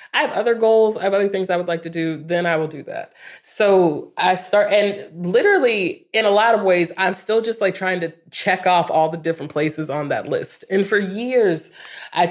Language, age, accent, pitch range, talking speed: English, 20-39, American, 155-195 Hz, 230 wpm